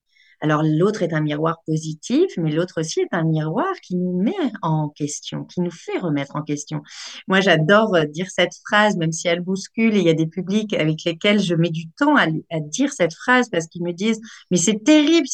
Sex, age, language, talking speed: female, 40-59, French, 225 wpm